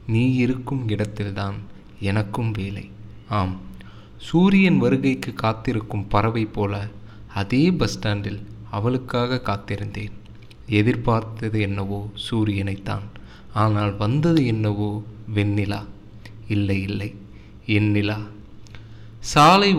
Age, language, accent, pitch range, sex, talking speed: 20-39, Tamil, native, 105-125 Hz, male, 80 wpm